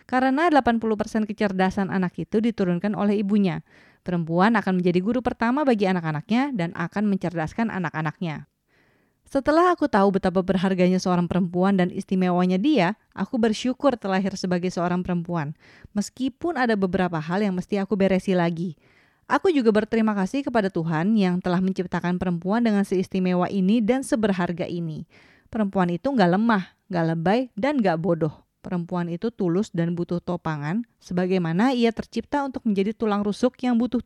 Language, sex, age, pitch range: Indonesian, female, 20-39, 180-230 Hz